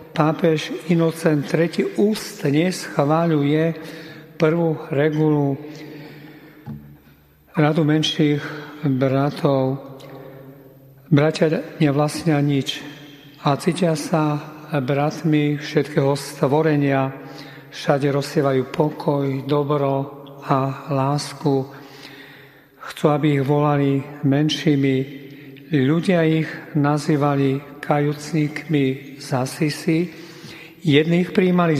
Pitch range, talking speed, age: 140-155 Hz, 70 wpm, 50-69